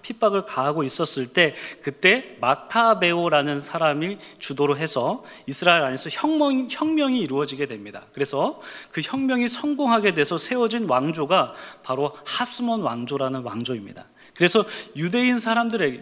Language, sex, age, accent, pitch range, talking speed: English, male, 30-49, Korean, 140-225 Hz, 110 wpm